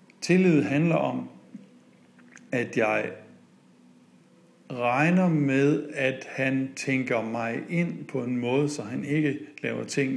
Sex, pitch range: male, 115-150 Hz